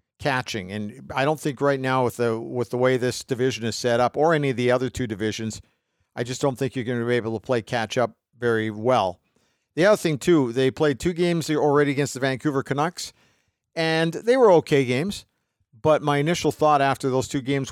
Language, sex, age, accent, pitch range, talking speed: English, male, 50-69, American, 120-150 Hz, 220 wpm